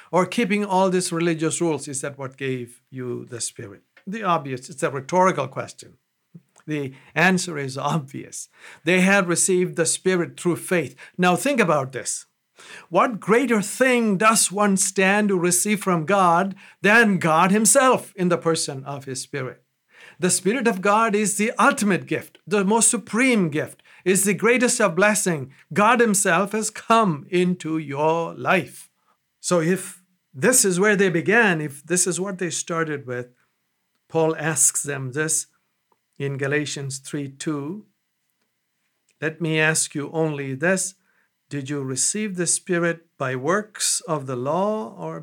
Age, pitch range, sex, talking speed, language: 50-69, 145-195 Hz, male, 155 wpm, English